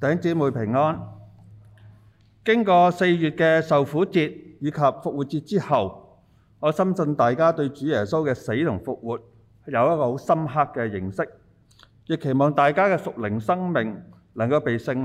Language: Chinese